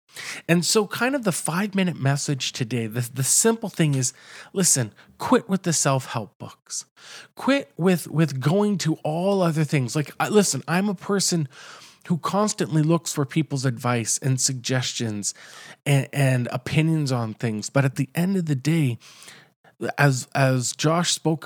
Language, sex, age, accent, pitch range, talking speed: English, male, 40-59, American, 135-180 Hz, 155 wpm